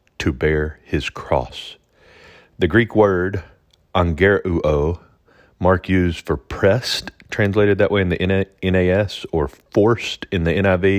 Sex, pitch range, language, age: male, 85-105 Hz, English, 40-59